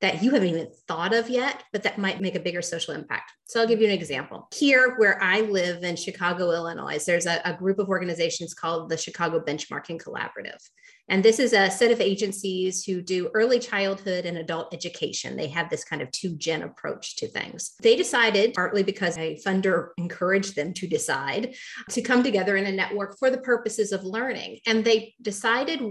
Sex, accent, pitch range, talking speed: female, American, 180-235 Hz, 200 wpm